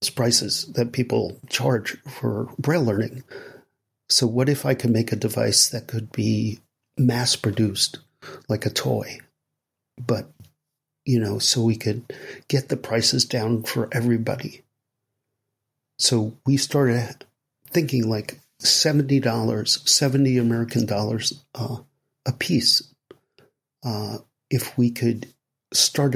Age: 50-69